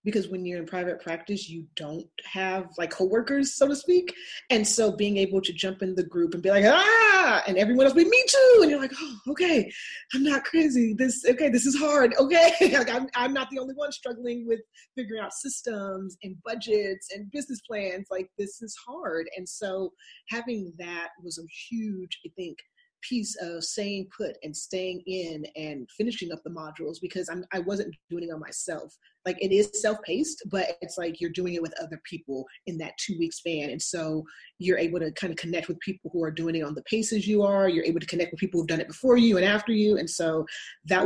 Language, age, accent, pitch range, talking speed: English, 30-49, American, 170-245 Hz, 220 wpm